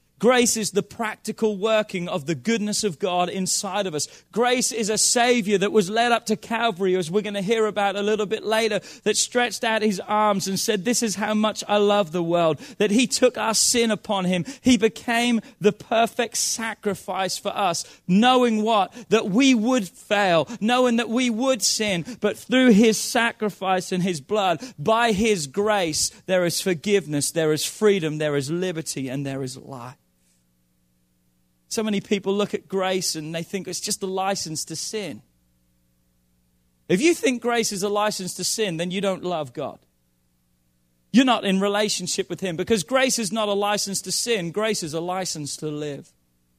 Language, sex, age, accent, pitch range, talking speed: English, male, 30-49, British, 175-230 Hz, 185 wpm